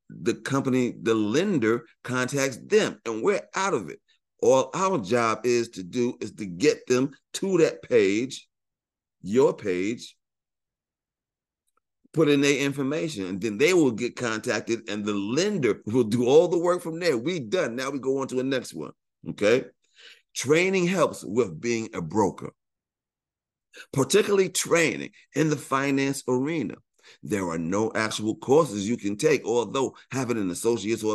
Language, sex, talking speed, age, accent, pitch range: English, male, 160 wpm, 50-69, American, 105-145 Hz